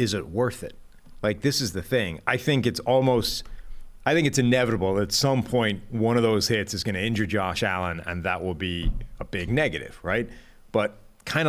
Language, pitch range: English, 100-125 Hz